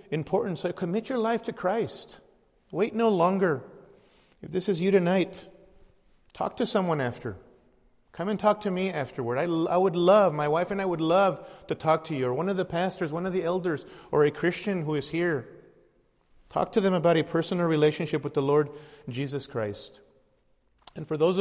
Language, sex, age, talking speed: English, male, 40-59, 195 wpm